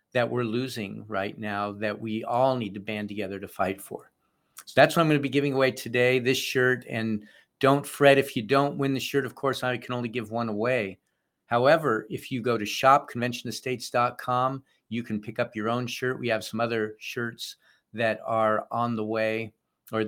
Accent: American